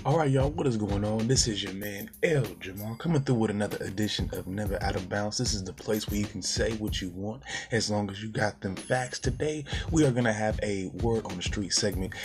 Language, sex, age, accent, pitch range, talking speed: English, male, 20-39, American, 100-120 Hz, 260 wpm